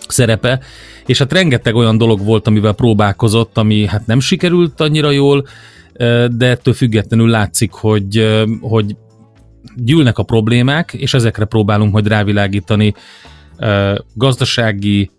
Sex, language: male, Hungarian